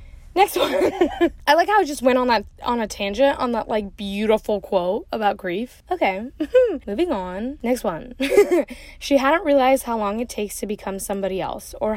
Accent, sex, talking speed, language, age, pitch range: American, female, 185 wpm, English, 10-29, 205-265 Hz